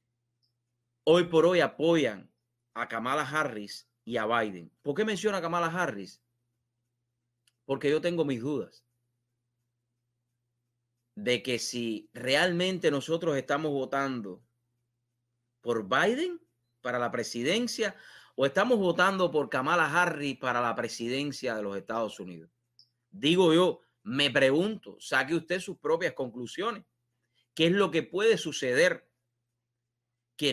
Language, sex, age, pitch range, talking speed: English, male, 30-49, 120-170 Hz, 120 wpm